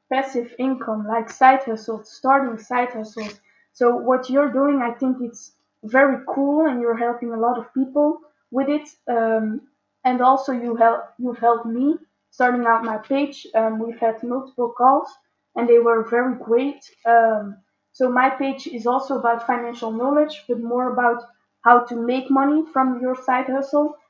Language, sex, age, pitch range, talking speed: English, female, 20-39, 235-275 Hz, 170 wpm